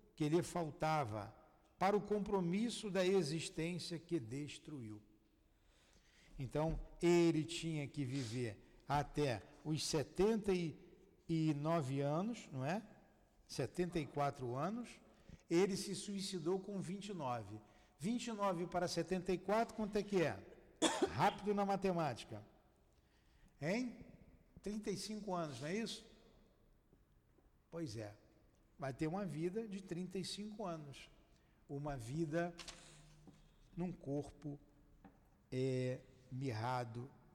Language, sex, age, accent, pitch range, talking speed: Portuguese, male, 60-79, Brazilian, 130-185 Hz, 95 wpm